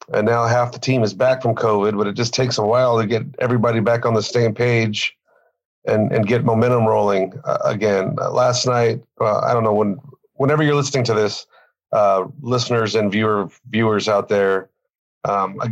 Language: English